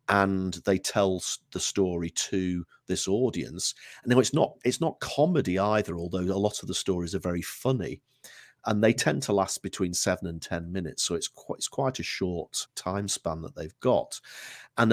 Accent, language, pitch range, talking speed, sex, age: British, English, 85-100 Hz, 195 wpm, male, 40-59